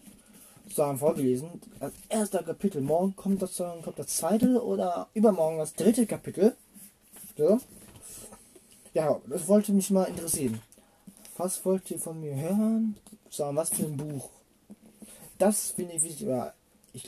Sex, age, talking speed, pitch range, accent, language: male, 20-39, 140 wpm, 150-210 Hz, German, German